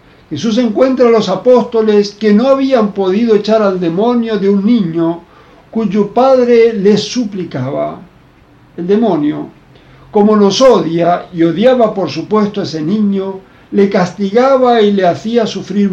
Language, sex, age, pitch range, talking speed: English, male, 60-79, 165-220 Hz, 140 wpm